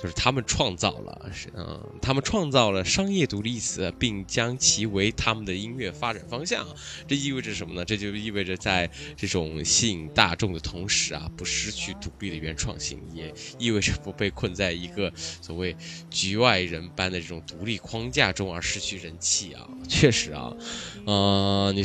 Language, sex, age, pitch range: Chinese, male, 20-39, 95-125 Hz